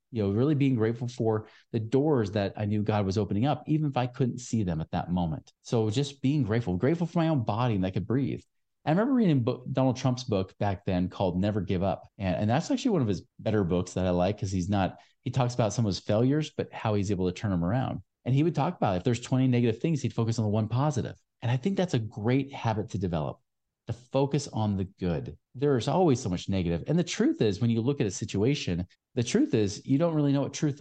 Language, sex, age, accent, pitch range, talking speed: English, male, 40-59, American, 100-140 Hz, 255 wpm